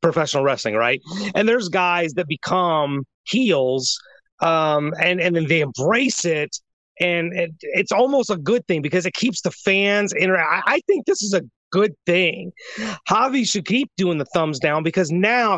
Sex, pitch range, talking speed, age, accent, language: male, 155-205 Hz, 175 wpm, 30-49, American, English